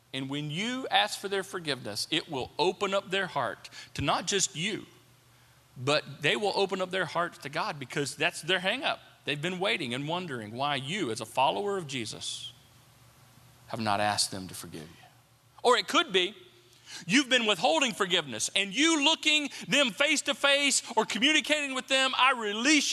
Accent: American